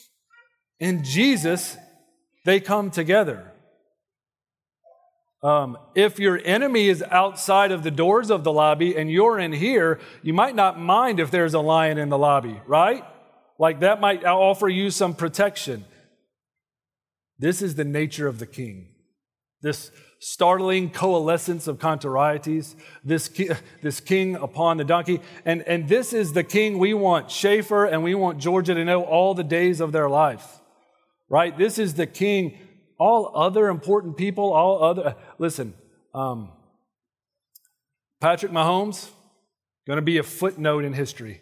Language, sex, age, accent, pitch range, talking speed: English, male, 40-59, American, 155-200 Hz, 150 wpm